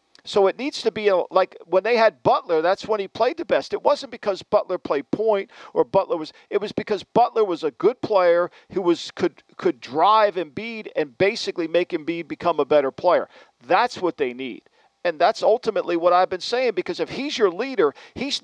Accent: American